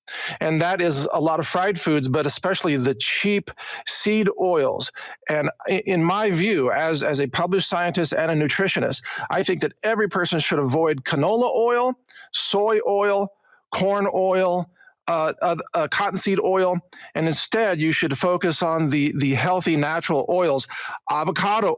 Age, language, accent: 40-59, English, American